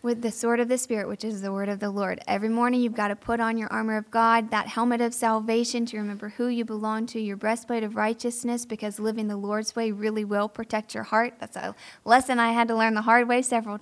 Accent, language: American, English